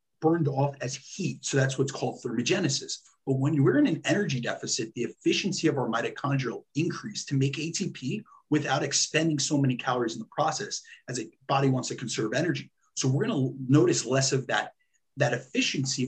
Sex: male